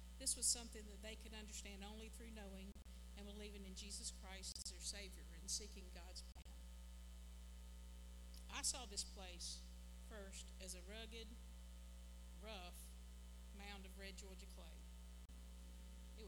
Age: 50-69